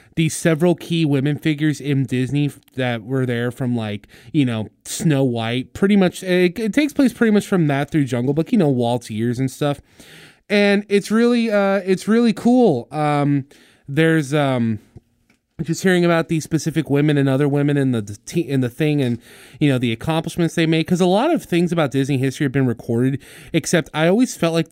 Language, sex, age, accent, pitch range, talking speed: English, male, 20-39, American, 125-170 Hz, 200 wpm